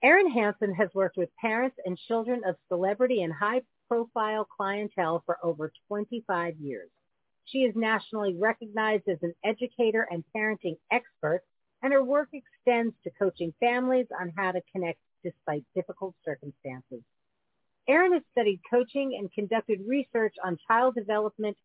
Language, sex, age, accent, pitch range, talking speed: English, female, 50-69, American, 185-245 Hz, 140 wpm